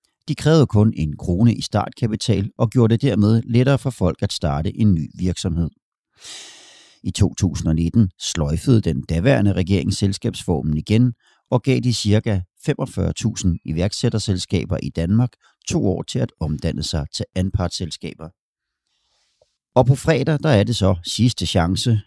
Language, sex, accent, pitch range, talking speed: Danish, male, native, 90-125 Hz, 135 wpm